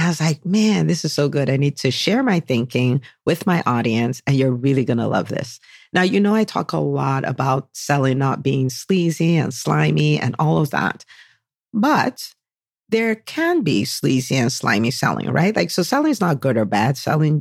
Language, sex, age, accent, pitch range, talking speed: English, female, 50-69, American, 130-180 Hz, 205 wpm